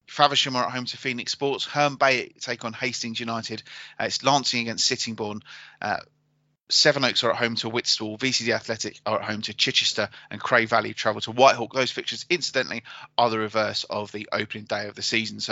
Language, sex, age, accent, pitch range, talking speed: English, male, 30-49, British, 115-140 Hz, 200 wpm